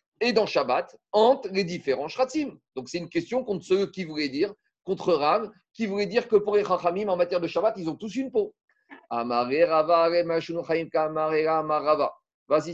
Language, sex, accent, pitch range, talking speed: French, male, French, 155-225 Hz, 165 wpm